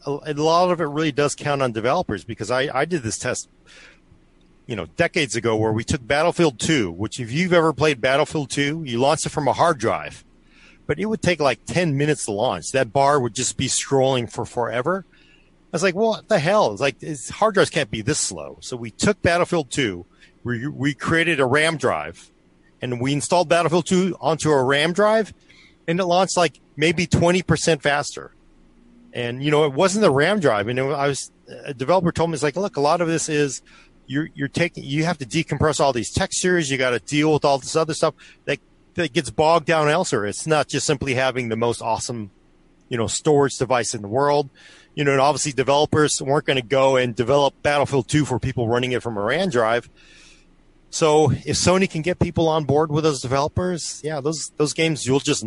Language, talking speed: English, 215 wpm